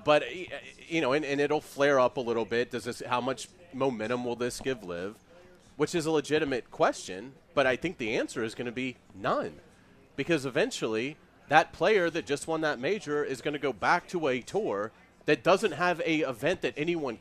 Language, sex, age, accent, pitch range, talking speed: English, male, 30-49, American, 120-160 Hz, 205 wpm